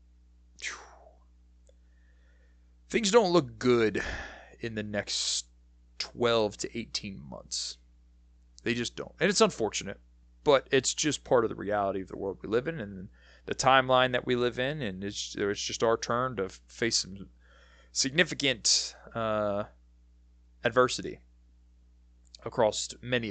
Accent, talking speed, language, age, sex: American, 130 wpm, English, 20-39, male